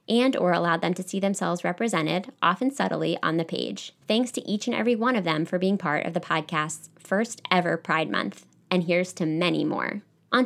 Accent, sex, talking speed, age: American, female, 210 wpm, 20-39